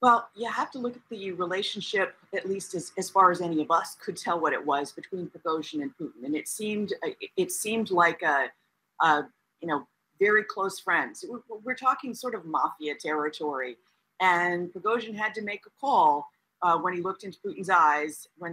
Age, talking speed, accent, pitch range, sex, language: 40-59, 195 wpm, American, 160-215 Hz, female, English